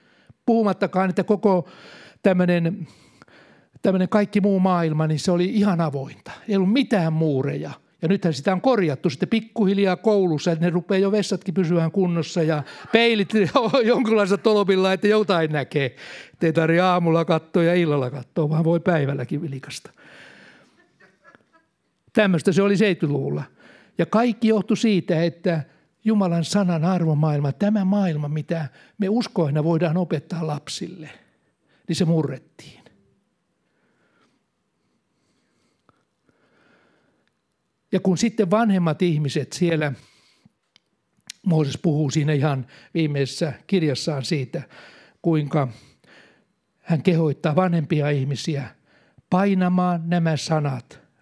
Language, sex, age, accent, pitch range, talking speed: Finnish, male, 60-79, native, 155-195 Hz, 110 wpm